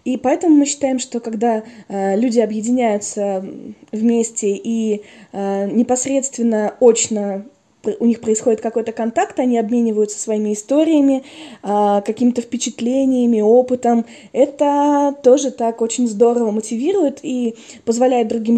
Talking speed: 115 wpm